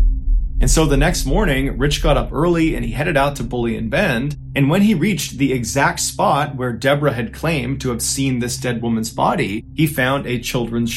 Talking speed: 215 wpm